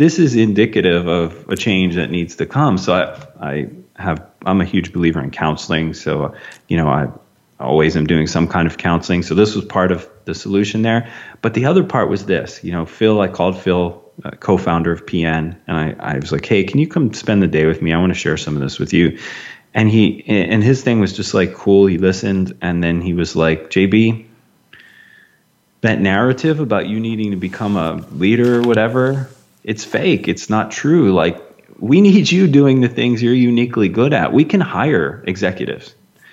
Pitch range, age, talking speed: 85-115 Hz, 30-49, 210 wpm